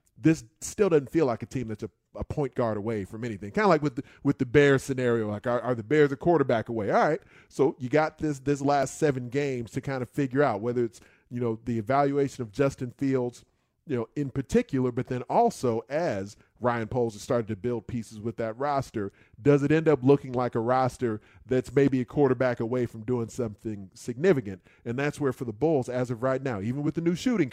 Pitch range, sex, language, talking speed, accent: 115-145 Hz, male, English, 230 wpm, American